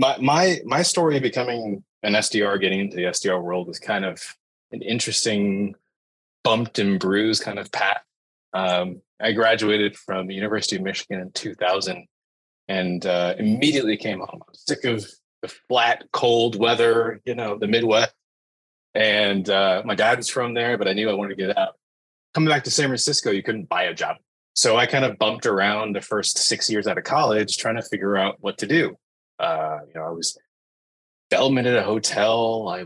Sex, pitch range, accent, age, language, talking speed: male, 95-125 Hz, American, 20-39, English, 195 wpm